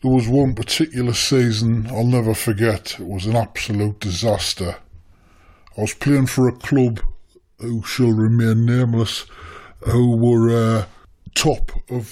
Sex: female